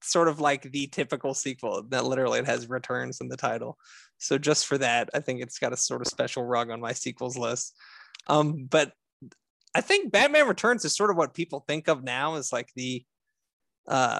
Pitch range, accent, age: 125-155 Hz, American, 20-39